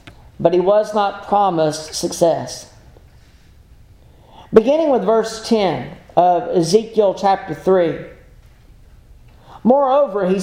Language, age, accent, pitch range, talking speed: English, 50-69, American, 185-235 Hz, 90 wpm